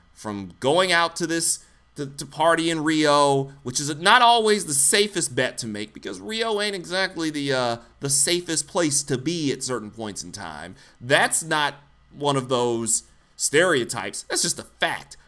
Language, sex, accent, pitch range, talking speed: English, male, American, 115-155 Hz, 175 wpm